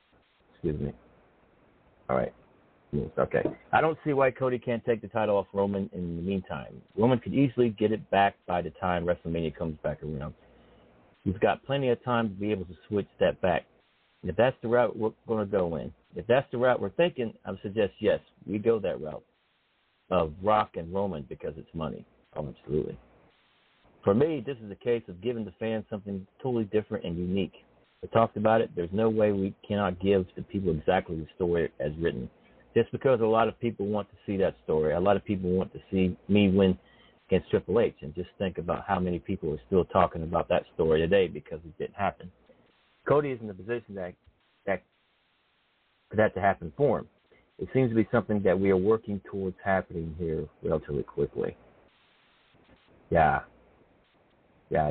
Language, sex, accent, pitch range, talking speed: English, male, American, 90-115 Hz, 195 wpm